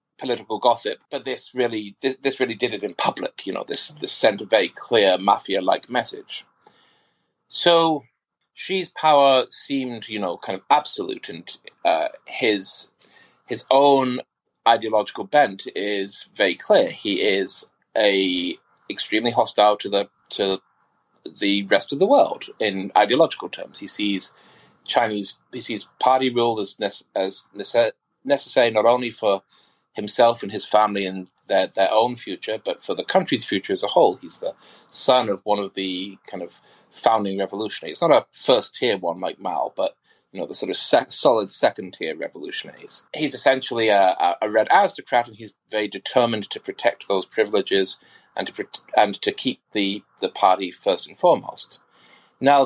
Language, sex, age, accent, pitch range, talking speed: English, male, 30-49, British, 100-155 Hz, 165 wpm